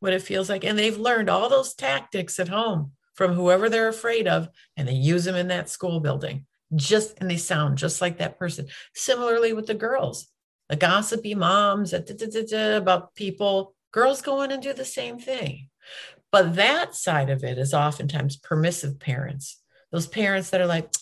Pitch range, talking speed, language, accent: 155-210 Hz, 185 wpm, English, American